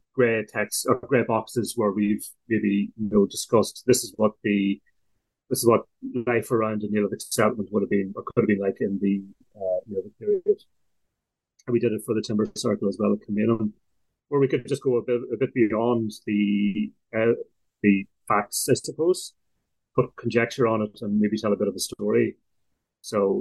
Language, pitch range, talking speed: English, 100-115 Hz, 205 wpm